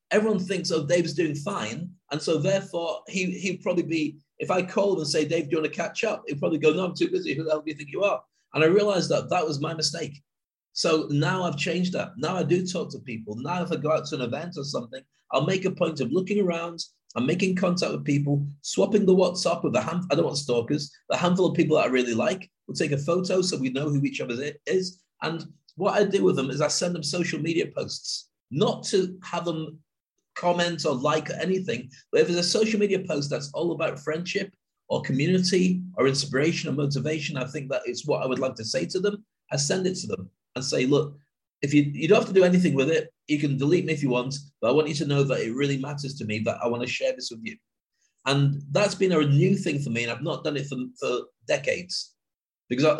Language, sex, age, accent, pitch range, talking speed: English, male, 30-49, British, 145-185 Hz, 250 wpm